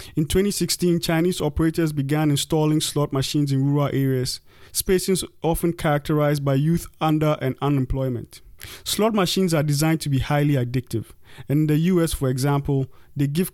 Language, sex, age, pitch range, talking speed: English, male, 30-49, 135-170 Hz, 155 wpm